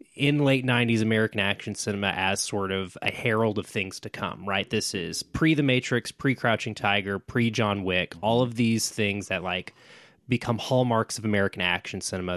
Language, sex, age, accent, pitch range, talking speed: English, male, 20-39, American, 105-140 Hz, 190 wpm